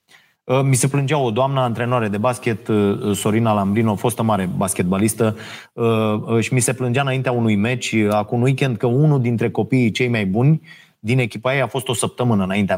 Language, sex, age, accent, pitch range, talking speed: Romanian, male, 30-49, native, 110-145 Hz, 185 wpm